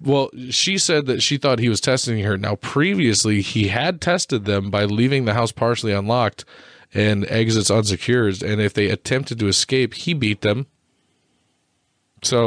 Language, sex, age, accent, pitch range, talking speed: English, male, 20-39, American, 105-125 Hz, 170 wpm